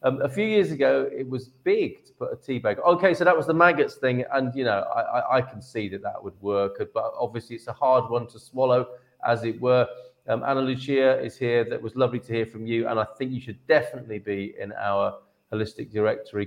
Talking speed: 240 wpm